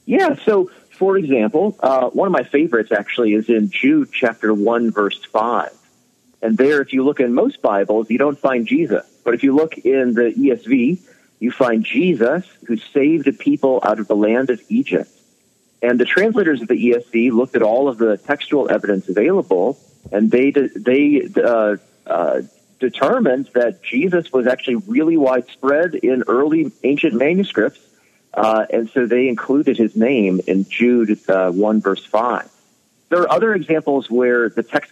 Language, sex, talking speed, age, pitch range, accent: English, male, 170 wpm, 40-59, 120-170 Hz, American